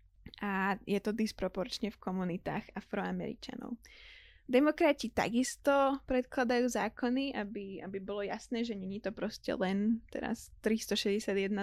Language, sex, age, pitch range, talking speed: Slovak, female, 10-29, 205-245 Hz, 115 wpm